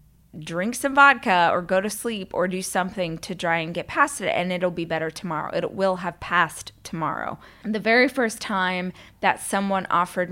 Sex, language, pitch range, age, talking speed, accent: female, English, 165-190 Hz, 20-39, 190 wpm, American